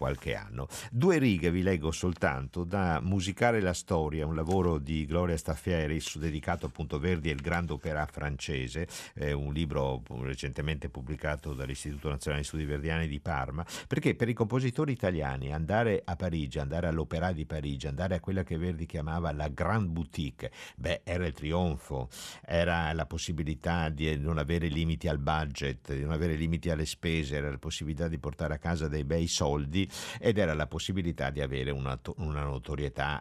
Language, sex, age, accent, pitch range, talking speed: Italian, male, 50-69, native, 75-95 Hz, 175 wpm